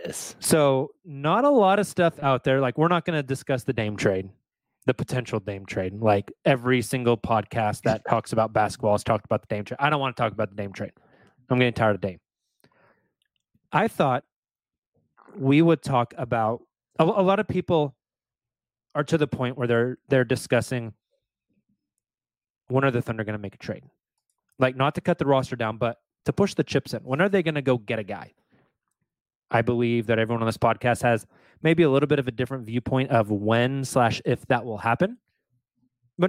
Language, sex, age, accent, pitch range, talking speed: English, male, 30-49, American, 115-145 Hz, 205 wpm